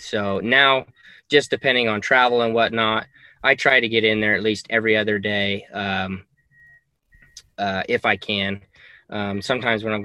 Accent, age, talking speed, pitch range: American, 20-39, 165 wpm, 100-110 Hz